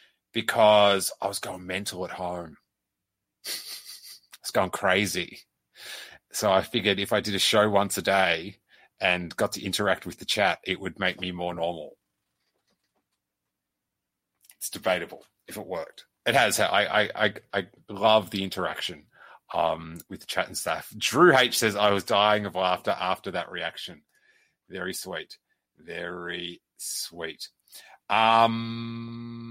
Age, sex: 30-49, male